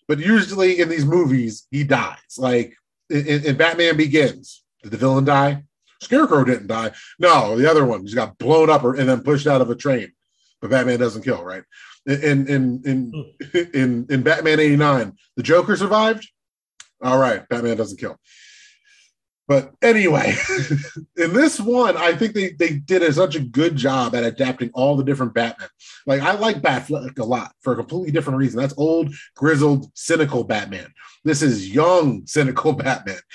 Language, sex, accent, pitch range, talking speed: English, male, American, 125-165 Hz, 175 wpm